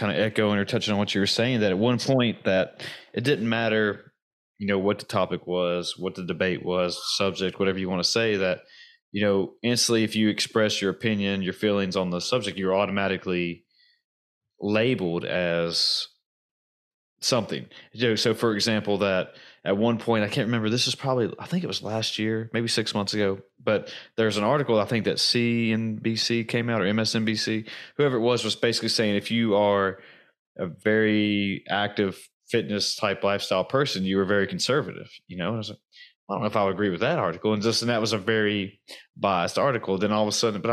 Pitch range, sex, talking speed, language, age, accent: 100-120 Hz, male, 210 wpm, English, 30-49, American